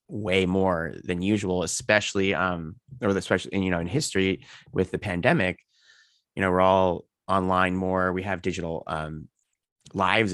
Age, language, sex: 20-39, English, male